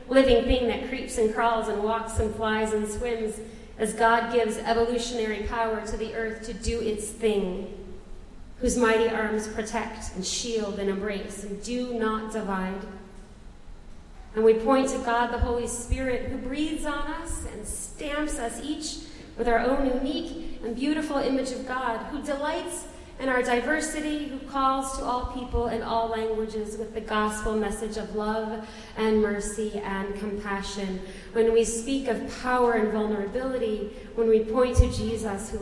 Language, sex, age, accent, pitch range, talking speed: English, female, 40-59, American, 210-245 Hz, 165 wpm